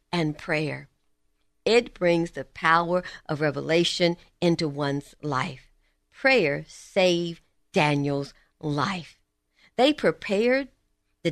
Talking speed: 95 wpm